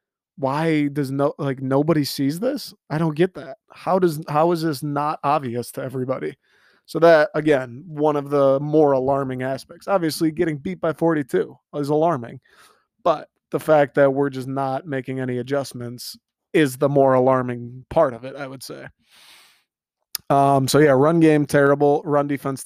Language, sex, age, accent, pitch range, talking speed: English, male, 20-39, American, 130-150 Hz, 170 wpm